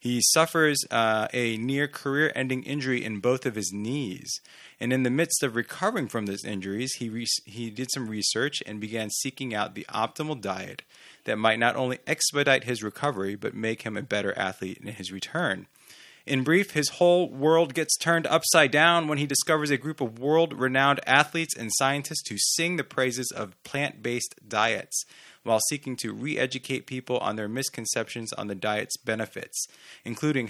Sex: male